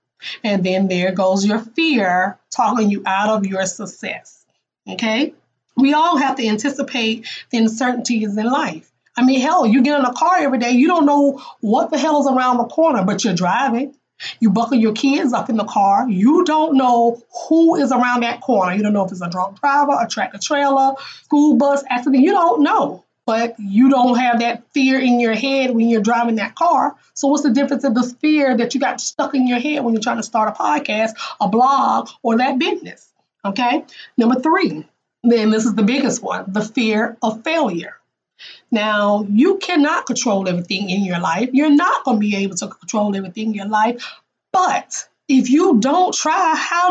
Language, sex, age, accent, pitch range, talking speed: English, female, 20-39, American, 220-290 Hz, 200 wpm